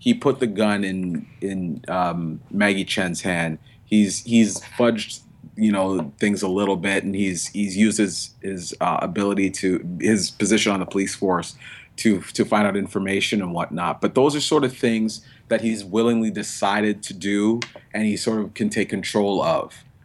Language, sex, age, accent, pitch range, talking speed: English, male, 30-49, American, 90-110 Hz, 185 wpm